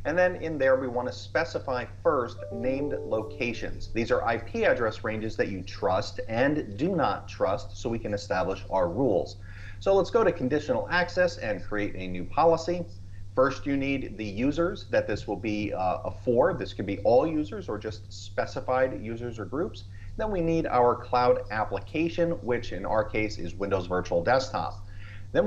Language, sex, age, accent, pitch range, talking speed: English, male, 30-49, American, 100-145 Hz, 180 wpm